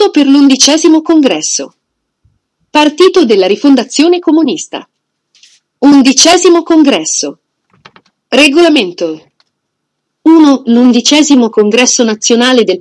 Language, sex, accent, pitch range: Italian, female, native, 210-295 Hz